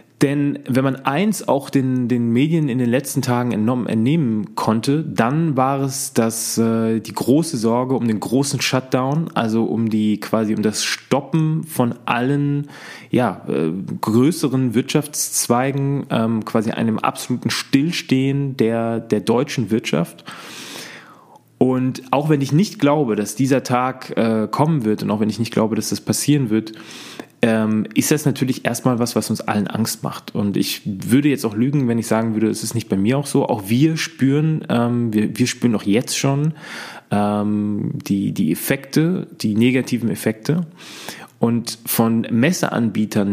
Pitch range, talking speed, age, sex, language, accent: 110-140 Hz, 165 wpm, 20-39, male, German, German